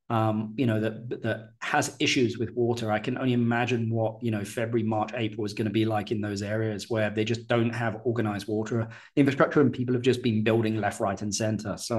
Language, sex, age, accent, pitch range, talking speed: English, male, 20-39, British, 115-135 Hz, 230 wpm